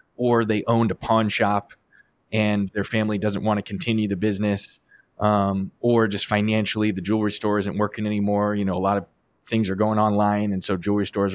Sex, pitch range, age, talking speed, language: male, 95-110 Hz, 20-39, 200 wpm, English